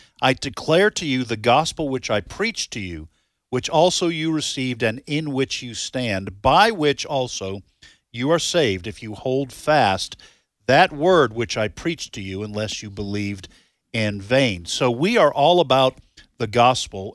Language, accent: English, American